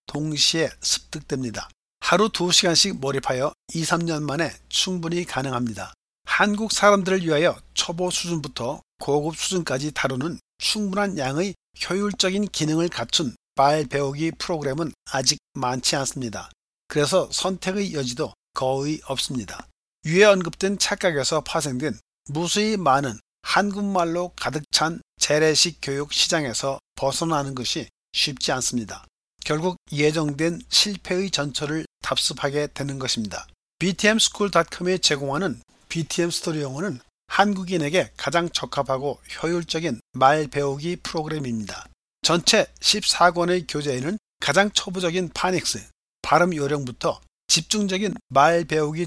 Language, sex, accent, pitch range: Korean, male, native, 140-180 Hz